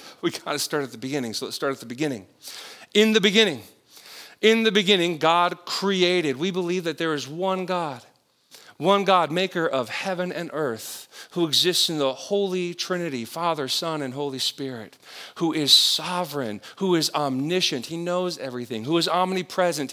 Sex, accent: male, American